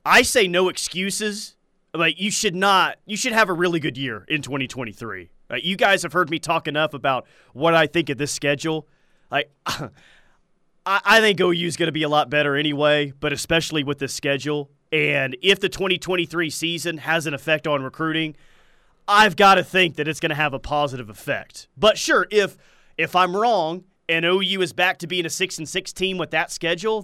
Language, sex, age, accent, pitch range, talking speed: English, male, 30-49, American, 145-190 Hz, 200 wpm